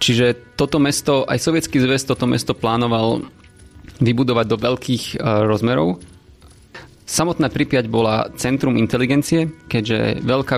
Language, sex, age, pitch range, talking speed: Slovak, male, 20-39, 110-125 Hz, 115 wpm